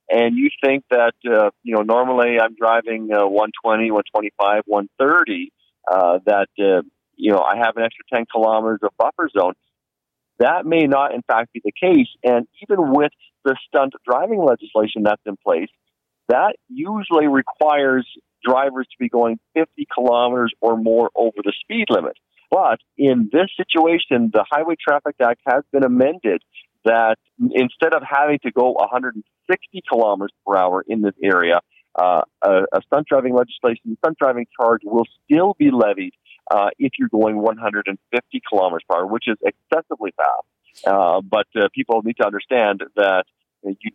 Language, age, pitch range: English, 50-69, 110-150 Hz